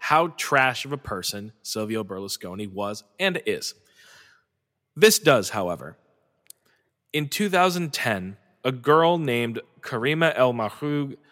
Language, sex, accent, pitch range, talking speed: English, male, American, 105-135 Hz, 110 wpm